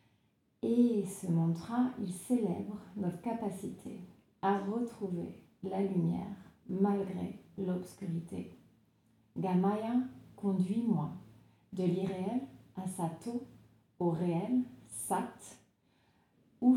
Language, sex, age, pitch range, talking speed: French, female, 40-59, 180-215 Hz, 80 wpm